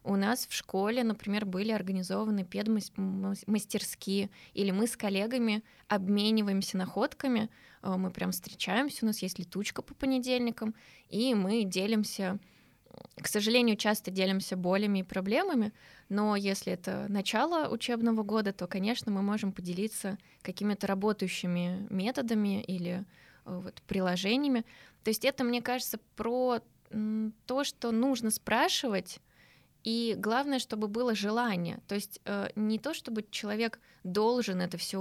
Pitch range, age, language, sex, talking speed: 190-235 Hz, 20-39, Russian, female, 125 wpm